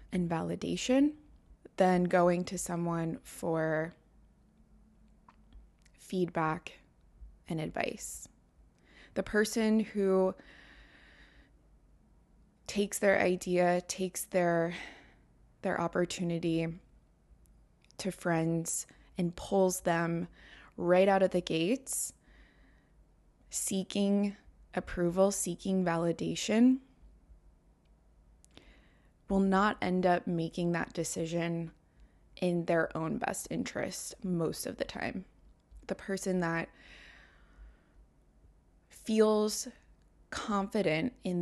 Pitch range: 165-195 Hz